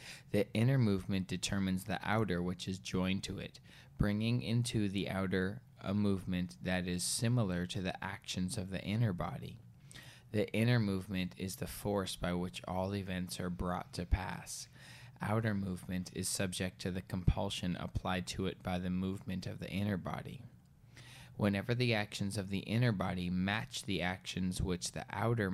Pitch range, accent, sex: 90-115 Hz, American, male